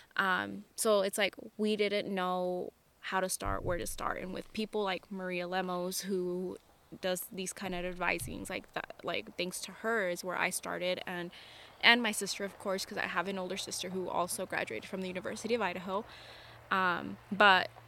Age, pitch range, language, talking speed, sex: 10-29, 180-200 Hz, English, 190 wpm, female